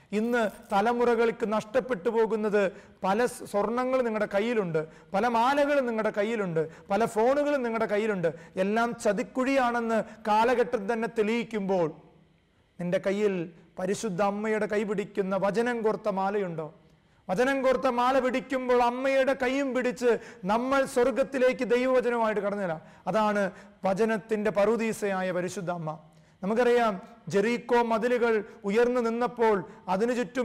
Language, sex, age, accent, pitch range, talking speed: English, male, 30-49, Indian, 200-235 Hz, 135 wpm